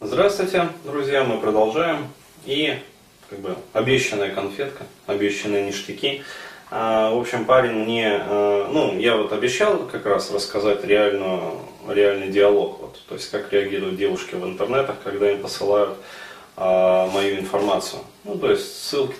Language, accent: Russian, native